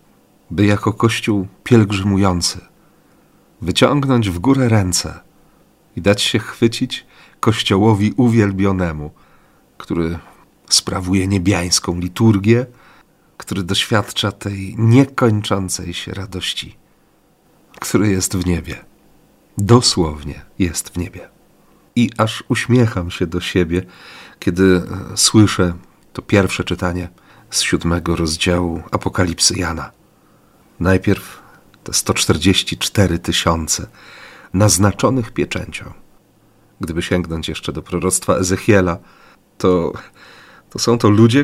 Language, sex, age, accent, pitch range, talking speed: Polish, male, 40-59, native, 90-110 Hz, 95 wpm